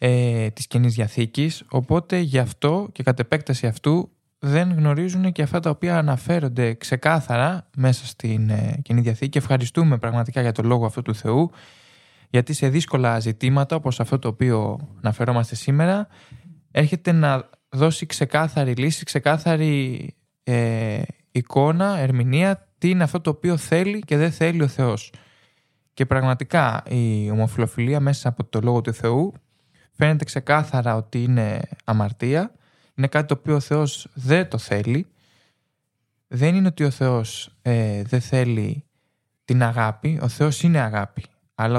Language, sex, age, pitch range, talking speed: Greek, male, 20-39, 120-150 Hz, 140 wpm